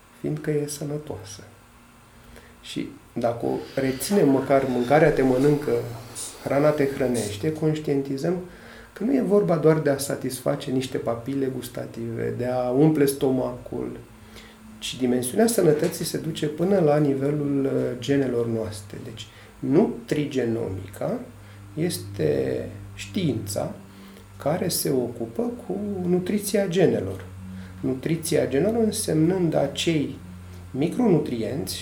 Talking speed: 100 wpm